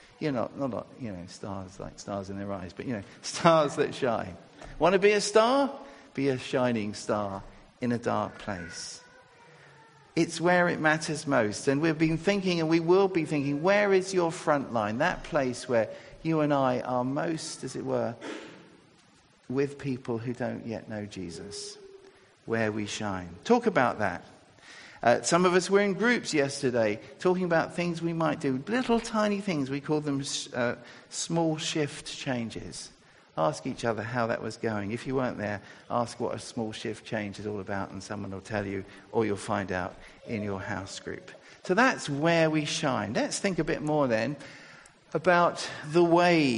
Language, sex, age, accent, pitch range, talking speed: English, male, 50-69, British, 110-165 Hz, 185 wpm